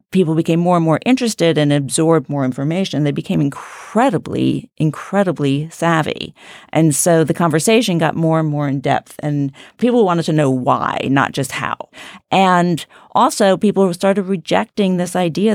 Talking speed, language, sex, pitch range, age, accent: 155 wpm, English, female, 165-215 Hz, 40-59, American